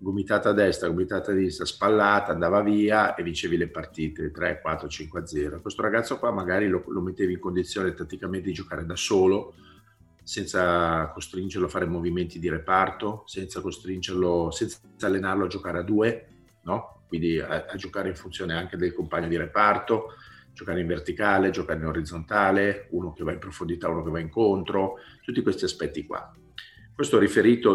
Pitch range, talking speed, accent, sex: 90-105 Hz, 170 wpm, native, male